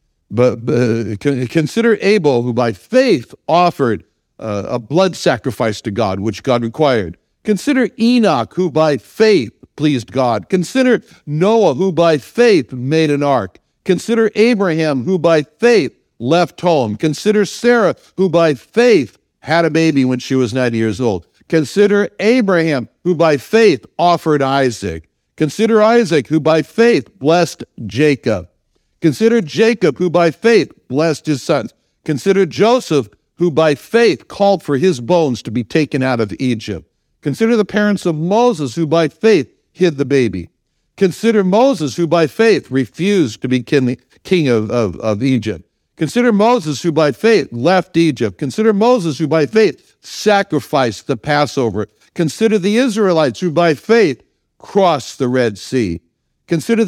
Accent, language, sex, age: American, English, male, 60-79